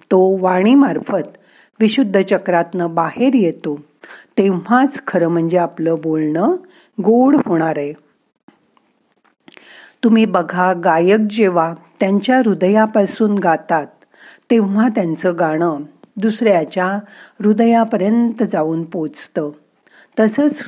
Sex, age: female, 50-69